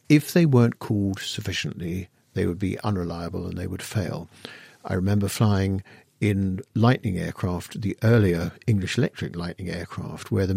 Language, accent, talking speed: English, British, 155 wpm